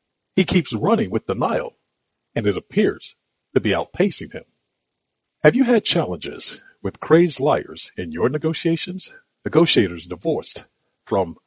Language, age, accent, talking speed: English, 60-79, American, 130 wpm